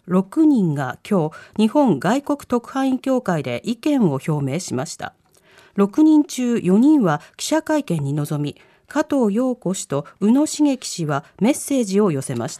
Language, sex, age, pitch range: Japanese, female, 40-59, 170-280 Hz